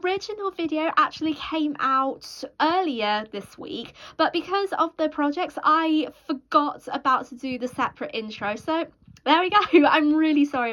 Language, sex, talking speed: English, female, 155 wpm